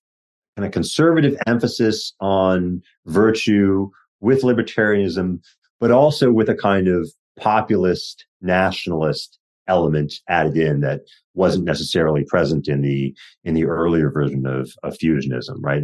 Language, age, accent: English, 40-59, American